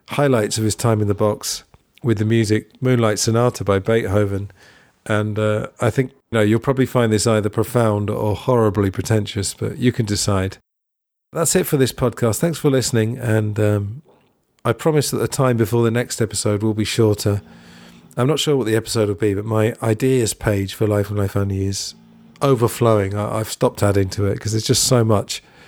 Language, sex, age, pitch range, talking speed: English, male, 40-59, 100-115 Hz, 200 wpm